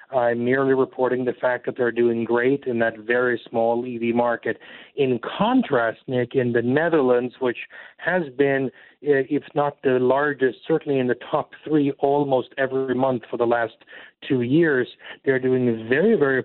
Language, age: English, 40-59